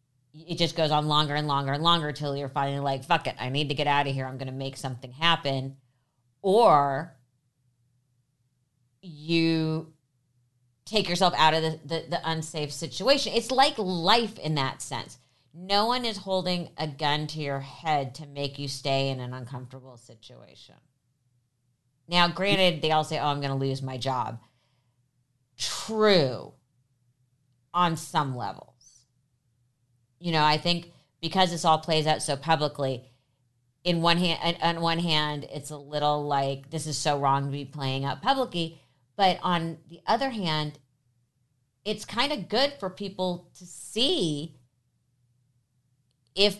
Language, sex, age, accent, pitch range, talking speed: English, female, 40-59, American, 125-165 Hz, 155 wpm